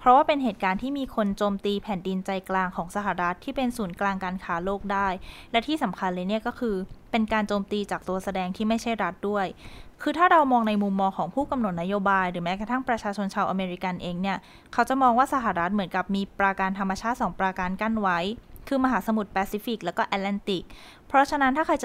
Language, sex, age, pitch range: Thai, female, 20-39, 195-245 Hz